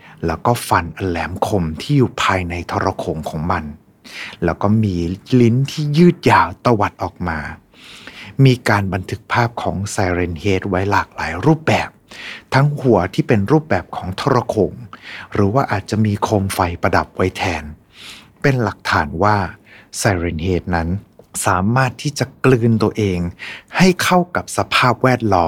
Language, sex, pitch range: Thai, male, 90-120 Hz